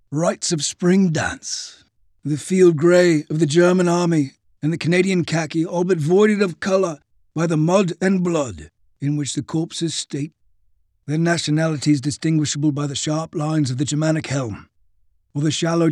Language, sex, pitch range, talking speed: English, male, 110-170 Hz, 165 wpm